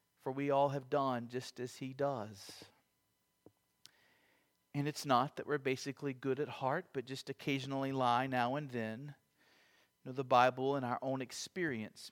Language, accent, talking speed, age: English, American, 165 wpm, 40-59